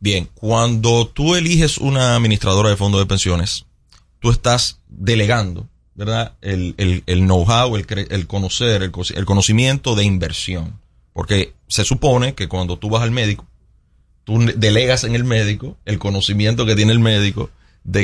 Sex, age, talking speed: male, 30-49, 155 wpm